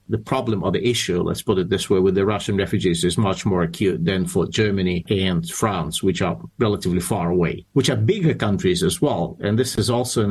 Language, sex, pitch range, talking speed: English, male, 105-150 Hz, 220 wpm